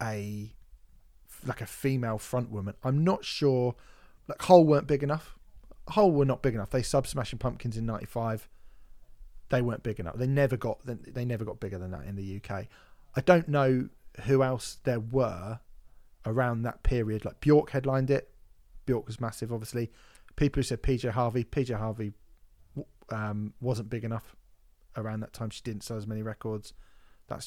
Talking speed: 175 wpm